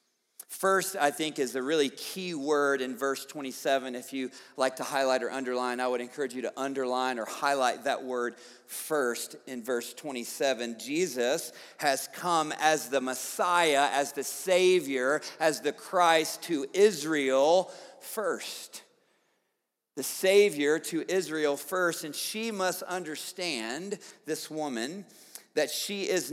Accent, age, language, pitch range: American, 50-69, English, 135-180 Hz